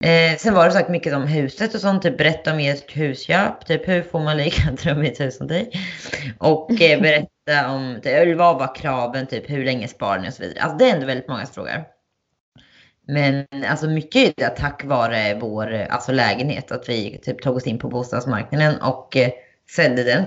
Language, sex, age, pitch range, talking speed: Swedish, female, 20-39, 125-160 Hz, 195 wpm